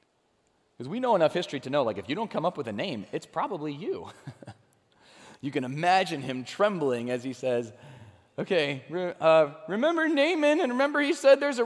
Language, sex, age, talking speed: English, male, 30-49, 190 wpm